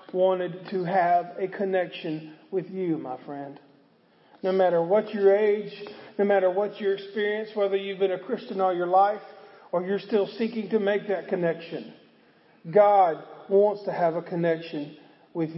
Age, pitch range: 40-59, 195-260 Hz